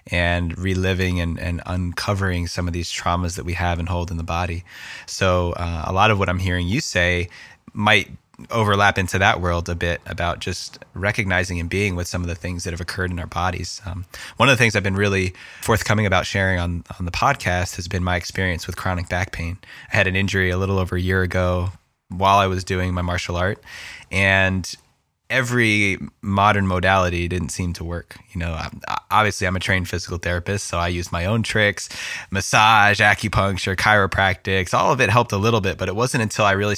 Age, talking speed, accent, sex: 20-39, 210 wpm, American, male